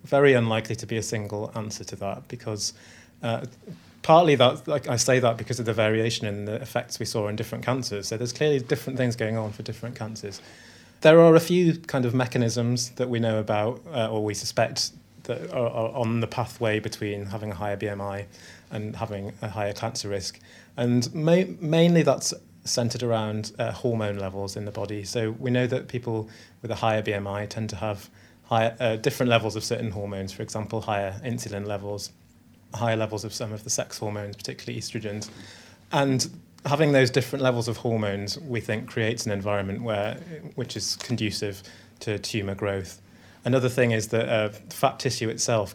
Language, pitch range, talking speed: English, 105-120 Hz, 185 wpm